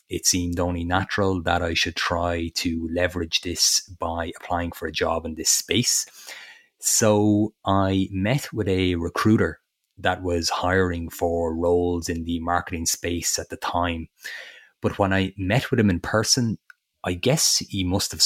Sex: male